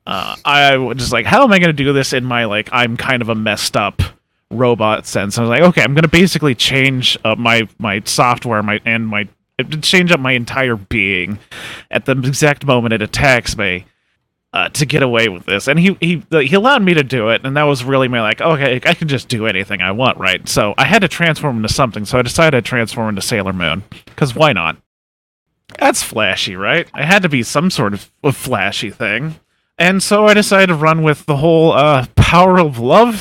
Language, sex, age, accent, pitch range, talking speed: English, male, 30-49, American, 115-155 Hz, 230 wpm